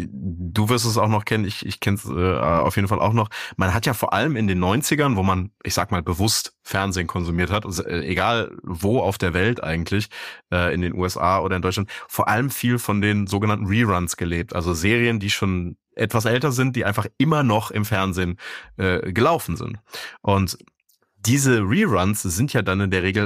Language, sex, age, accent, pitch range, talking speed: German, male, 30-49, German, 90-110 Hz, 205 wpm